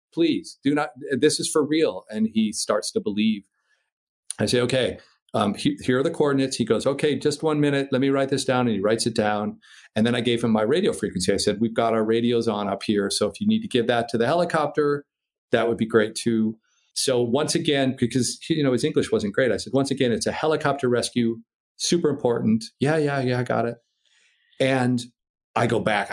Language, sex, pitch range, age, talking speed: English, male, 115-165 Hz, 40-59, 225 wpm